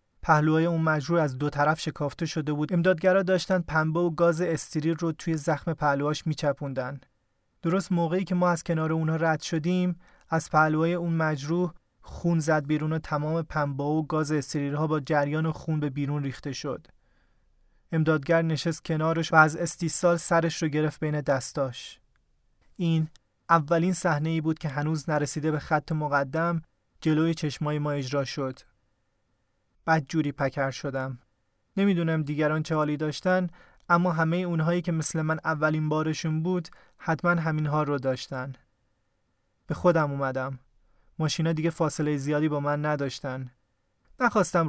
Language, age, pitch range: Persian, 30-49, 140-165 Hz